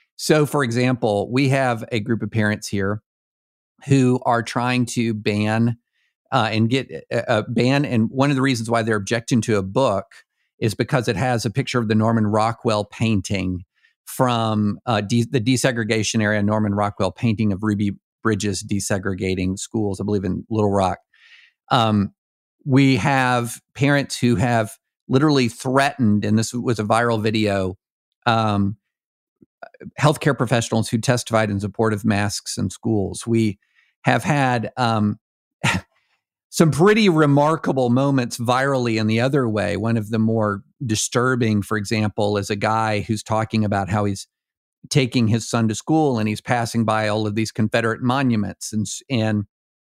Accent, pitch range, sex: American, 105-125 Hz, male